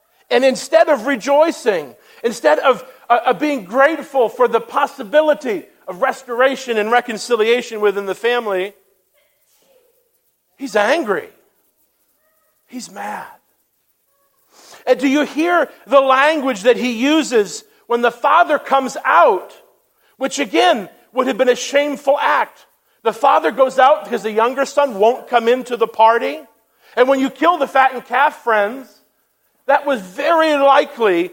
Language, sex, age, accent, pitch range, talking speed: English, male, 50-69, American, 220-285 Hz, 135 wpm